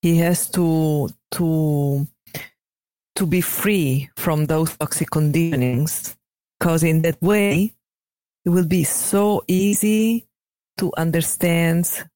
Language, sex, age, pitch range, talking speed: English, female, 40-59, 160-195 Hz, 110 wpm